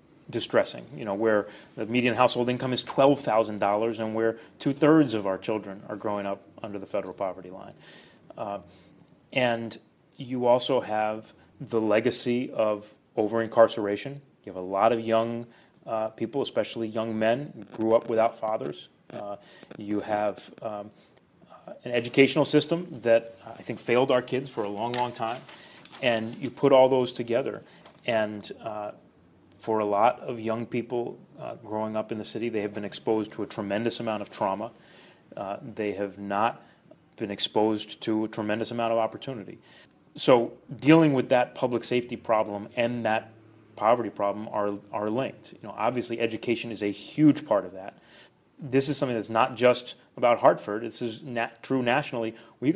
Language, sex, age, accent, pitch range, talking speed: English, male, 30-49, American, 105-120 Hz, 170 wpm